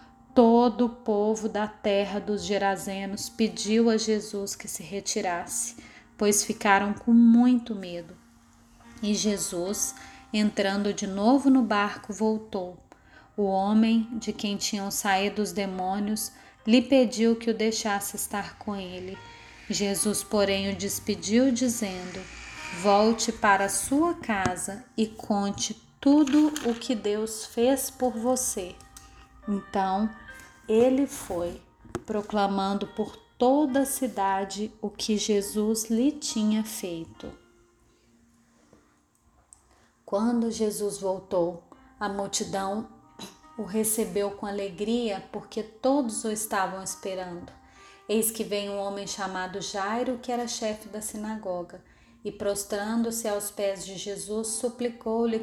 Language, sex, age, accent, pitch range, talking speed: Portuguese, female, 30-49, Brazilian, 195-230 Hz, 115 wpm